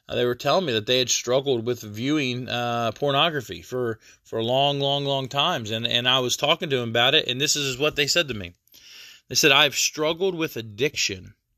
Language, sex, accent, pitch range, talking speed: English, male, American, 120-155 Hz, 220 wpm